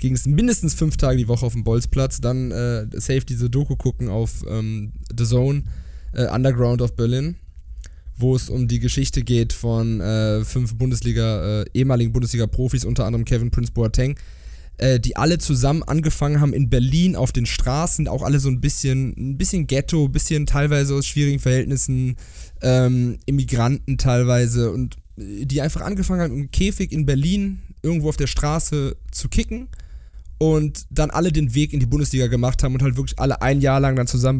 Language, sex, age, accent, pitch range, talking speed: German, male, 20-39, German, 120-145 Hz, 180 wpm